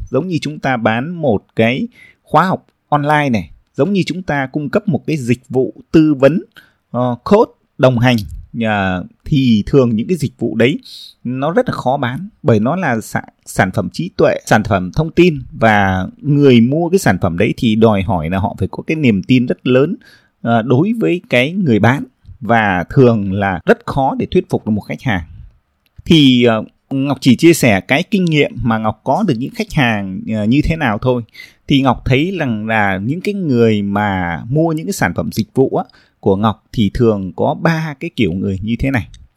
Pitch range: 105-150 Hz